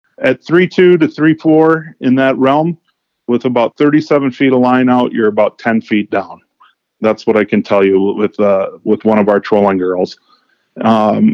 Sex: male